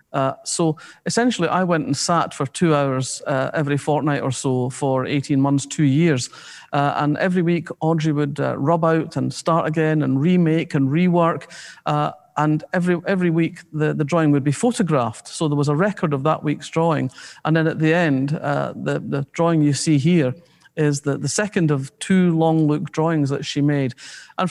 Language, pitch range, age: English, 145-180 Hz, 50-69